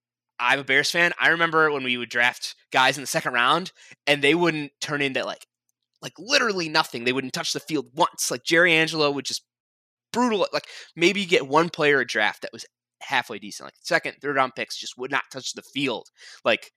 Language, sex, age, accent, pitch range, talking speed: English, male, 20-39, American, 110-145 Hz, 210 wpm